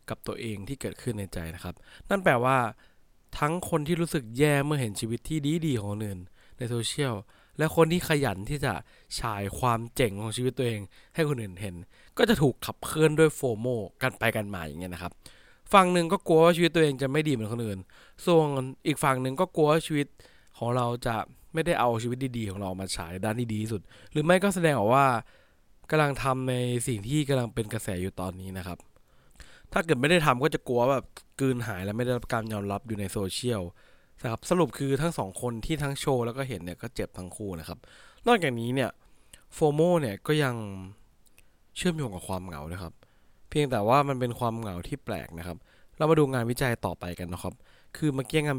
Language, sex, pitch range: English, male, 100-140 Hz